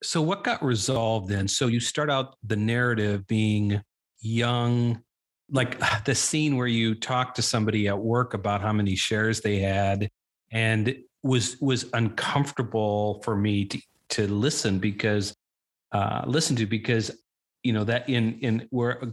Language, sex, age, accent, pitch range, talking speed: English, male, 40-59, American, 105-130 Hz, 155 wpm